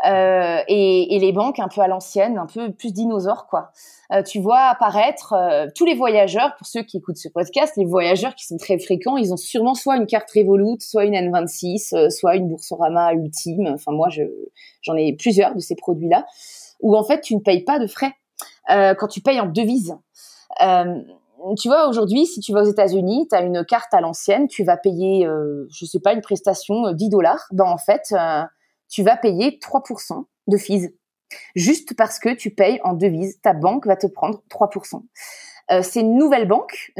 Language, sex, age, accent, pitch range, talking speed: French, female, 20-39, French, 185-245 Hz, 205 wpm